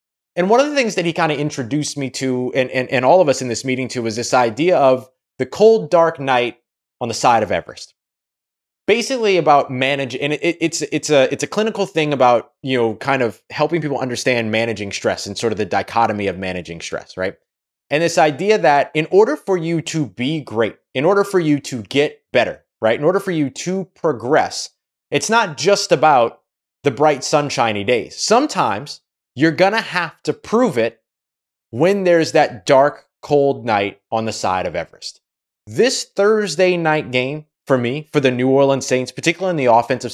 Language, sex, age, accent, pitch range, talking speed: English, male, 20-39, American, 125-170 Hz, 200 wpm